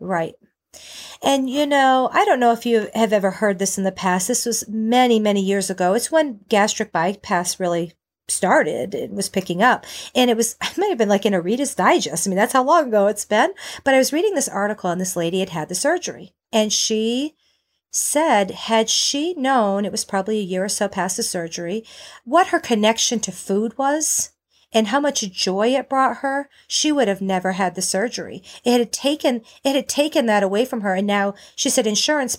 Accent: American